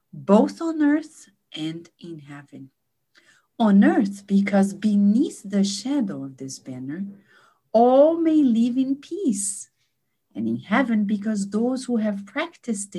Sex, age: female, 50-69